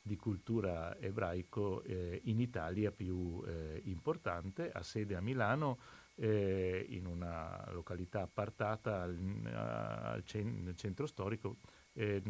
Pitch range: 90-115 Hz